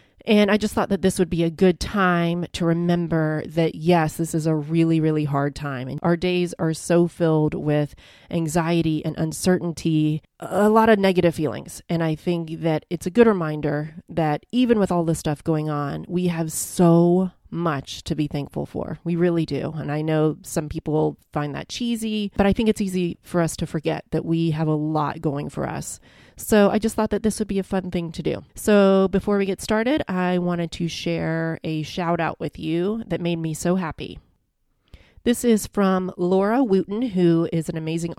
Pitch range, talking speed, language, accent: 160-190 Hz, 205 wpm, English, American